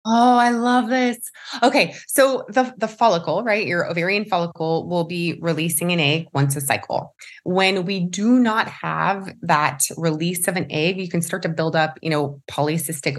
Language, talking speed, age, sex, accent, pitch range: English, 180 wpm, 20-39, female, American, 155-195 Hz